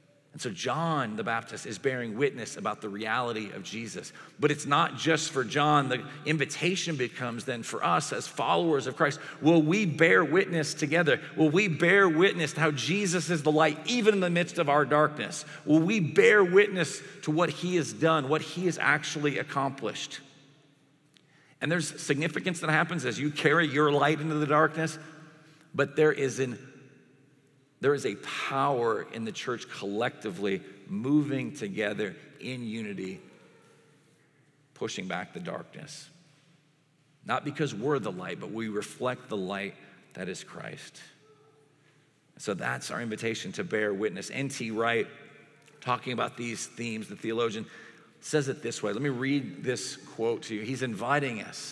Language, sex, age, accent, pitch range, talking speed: English, male, 40-59, American, 130-160 Hz, 160 wpm